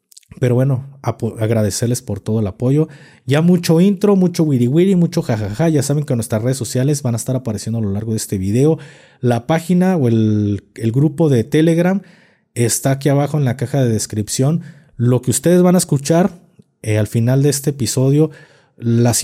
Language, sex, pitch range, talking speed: Spanish, male, 110-140 Hz, 185 wpm